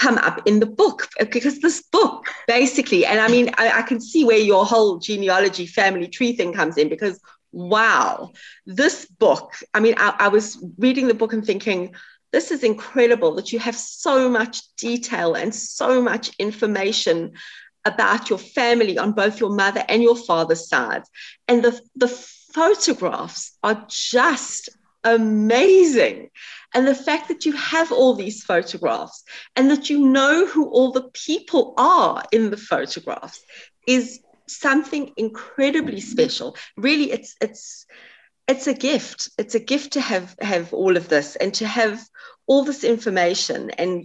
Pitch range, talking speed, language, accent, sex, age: 205-270 Hz, 160 wpm, English, British, female, 30-49